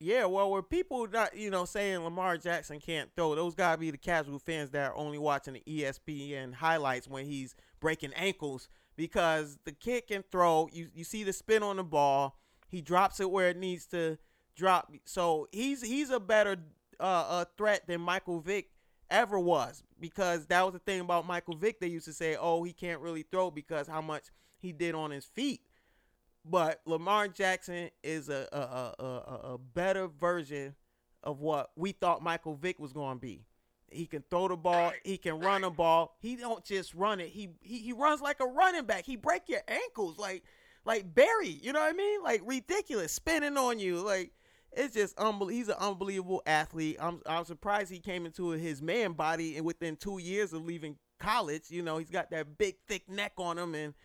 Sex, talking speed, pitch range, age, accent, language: male, 205 wpm, 155-200 Hz, 30-49, American, English